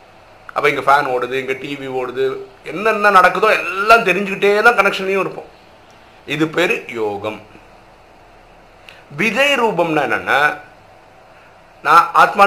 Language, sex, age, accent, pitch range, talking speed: Tamil, male, 50-69, native, 150-220 Hz, 90 wpm